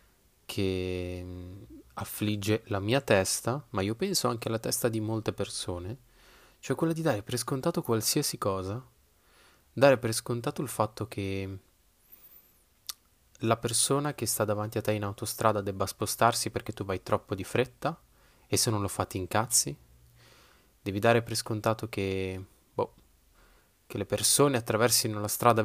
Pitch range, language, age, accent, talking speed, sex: 95-120 Hz, Italian, 20-39, native, 145 wpm, male